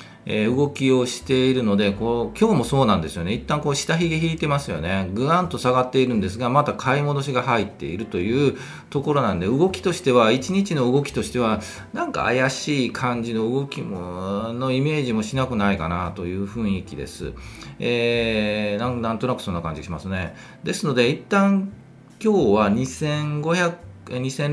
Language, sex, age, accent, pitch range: Japanese, male, 40-59, native, 100-145 Hz